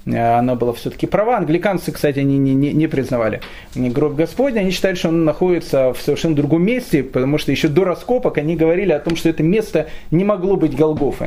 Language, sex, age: Russian, male, 30-49